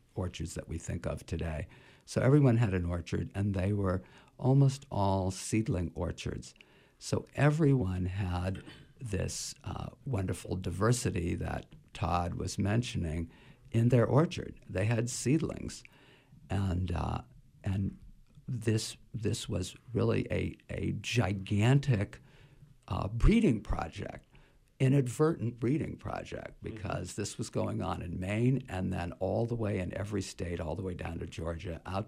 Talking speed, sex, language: 135 wpm, male, English